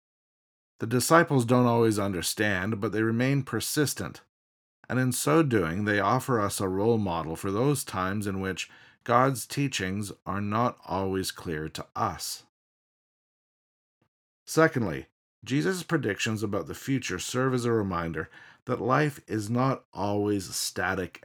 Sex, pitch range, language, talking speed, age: male, 95-125 Hz, English, 135 wpm, 40-59